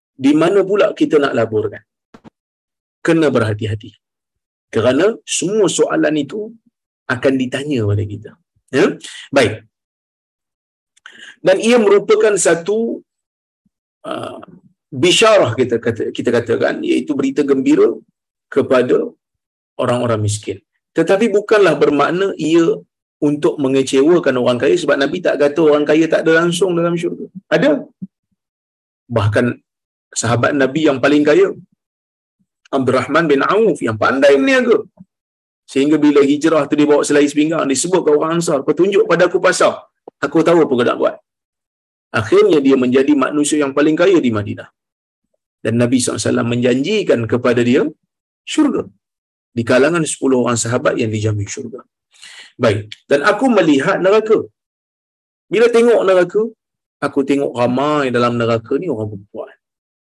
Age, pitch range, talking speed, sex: 50-69, 120-205 Hz, 135 wpm, male